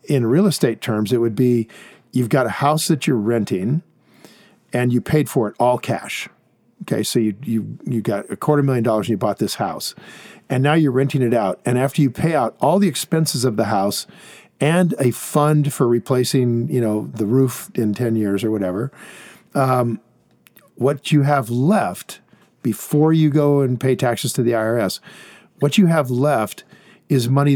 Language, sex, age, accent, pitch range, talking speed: English, male, 50-69, American, 115-150 Hz, 190 wpm